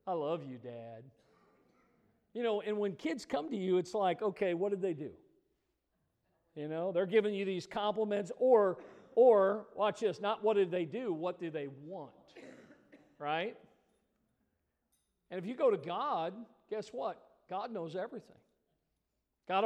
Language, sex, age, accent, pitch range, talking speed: English, male, 50-69, American, 180-255 Hz, 160 wpm